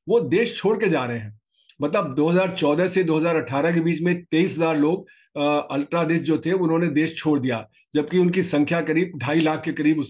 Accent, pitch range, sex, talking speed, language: native, 150-190 Hz, male, 200 wpm, Hindi